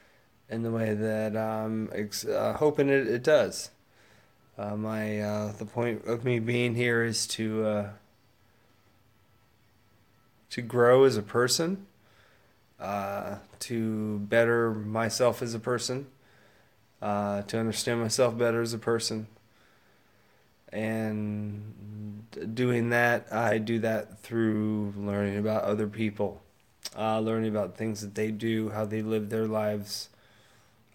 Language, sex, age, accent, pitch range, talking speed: English, male, 20-39, American, 105-120 Hz, 125 wpm